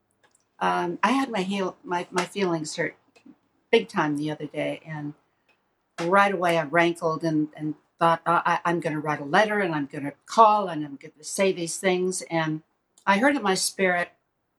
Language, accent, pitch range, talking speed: English, American, 155-195 Hz, 185 wpm